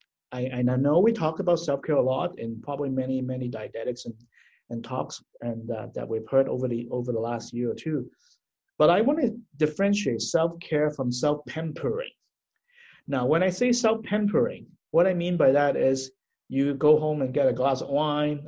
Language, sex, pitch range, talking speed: English, male, 125-165 Hz, 205 wpm